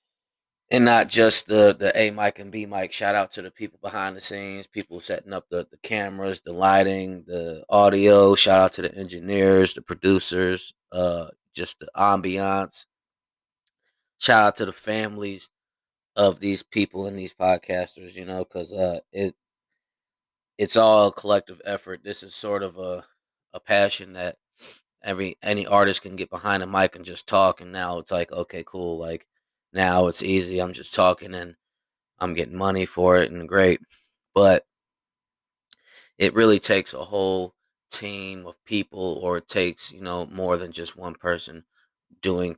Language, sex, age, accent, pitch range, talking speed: English, male, 20-39, American, 90-100 Hz, 170 wpm